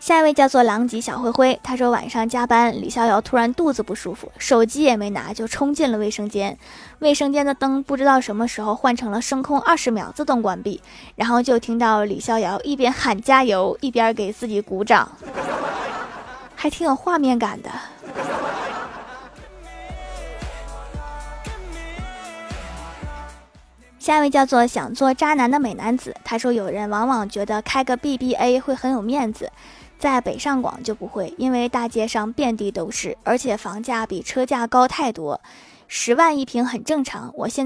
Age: 20-39